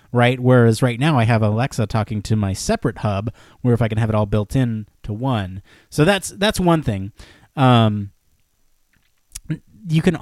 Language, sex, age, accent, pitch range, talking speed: English, male, 30-49, American, 110-140 Hz, 180 wpm